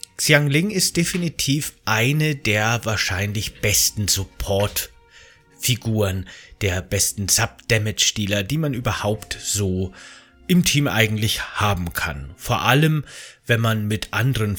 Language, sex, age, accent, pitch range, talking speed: German, male, 30-49, German, 100-130 Hz, 105 wpm